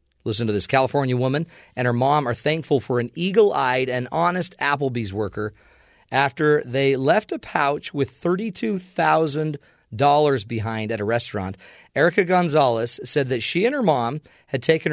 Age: 40-59